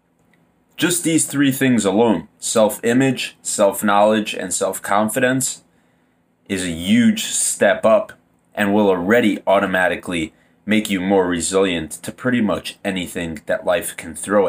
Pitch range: 85-115 Hz